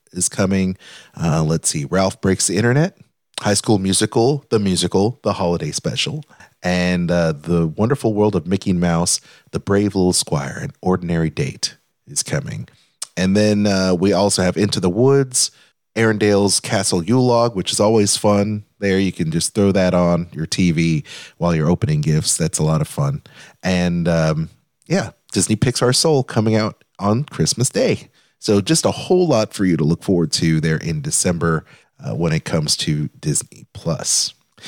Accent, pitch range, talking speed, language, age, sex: American, 90-125 Hz, 175 wpm, English, 30-49, male